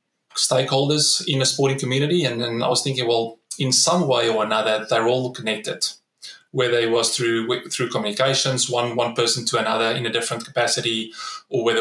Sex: male